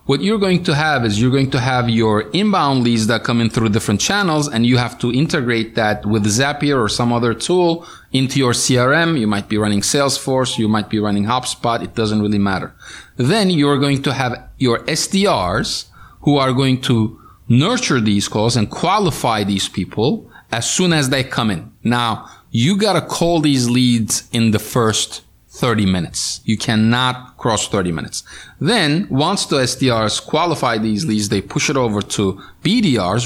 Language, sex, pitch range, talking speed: English, male, 110-140 Hz, 185 wpm